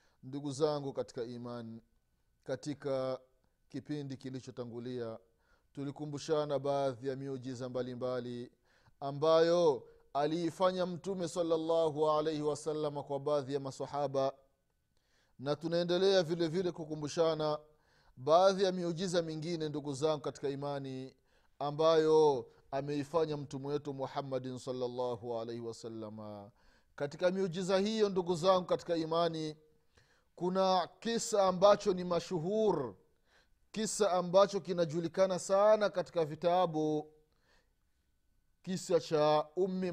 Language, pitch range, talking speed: Swahili, 135-180 Hz, 100 wpm